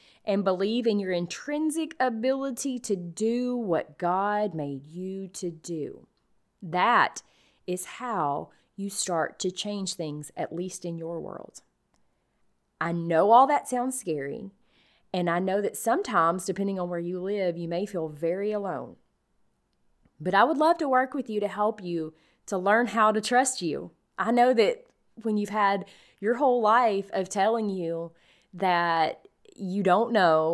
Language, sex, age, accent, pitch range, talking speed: English, female, 30-49, American, 165-215 Hz, 160 wpm